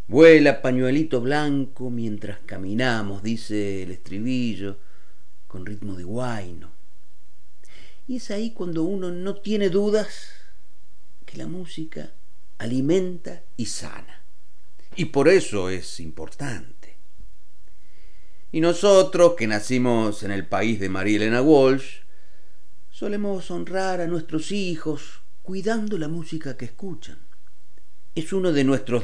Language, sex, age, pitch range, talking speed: Spanish, male, 40-59, 100-165 Hz, 115 wpm